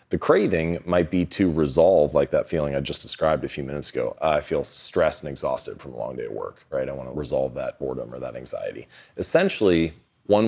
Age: 30-49